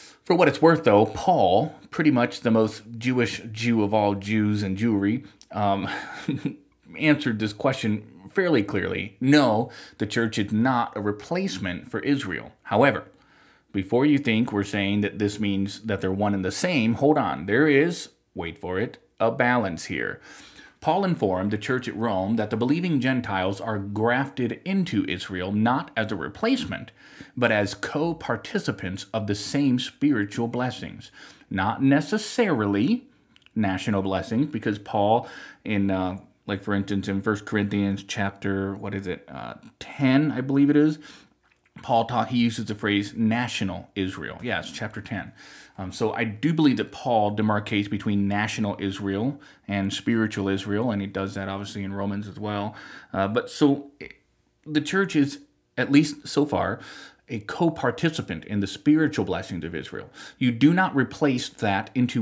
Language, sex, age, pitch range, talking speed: English, male, 30-49, 100-130 Hz, 160 wpm